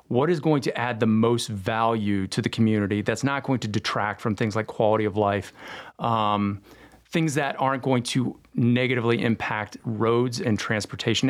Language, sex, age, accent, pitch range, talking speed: English, male, 40-59, American, 110-135 Hz, 175 wpm